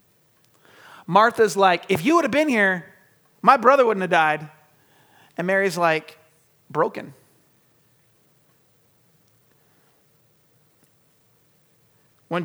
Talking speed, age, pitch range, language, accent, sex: 85 wpm, 30-49, 155-195 Hz, English, American, male